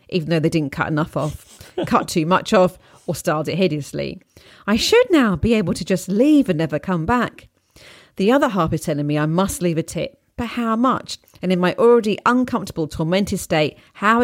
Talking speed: 205 wpm